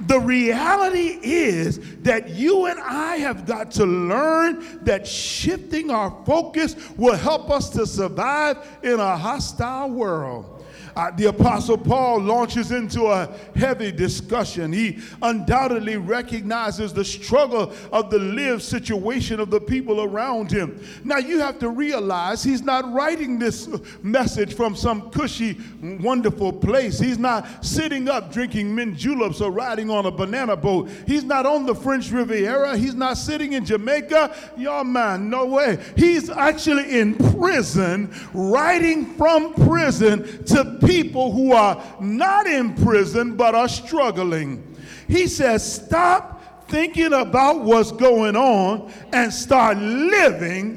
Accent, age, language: American, 50-69, English